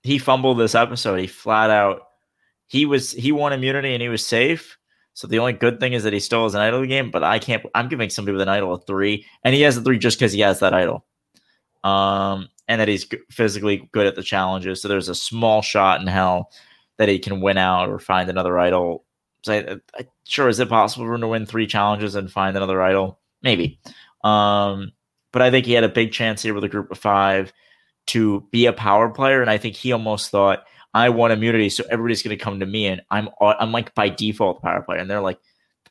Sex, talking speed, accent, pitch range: male, 240 wpm, American, 100-130 Hz